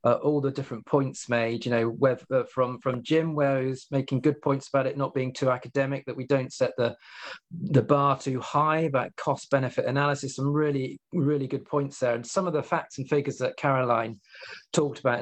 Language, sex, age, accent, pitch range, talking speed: English, male, 40-59, British, 130-155 Hz, 210 wpm